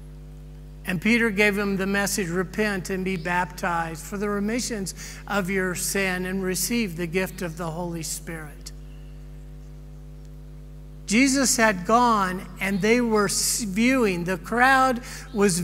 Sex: male